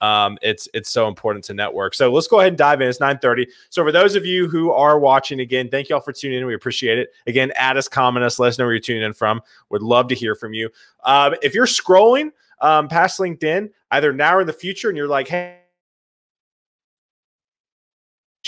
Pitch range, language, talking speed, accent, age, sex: 125-170 Hz, English, 230 wpm, American, 20-39, male